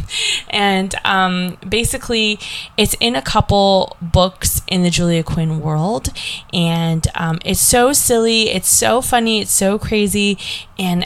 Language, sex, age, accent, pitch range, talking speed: English, female, 20-39, American, 170-220 Hz, 135 wpm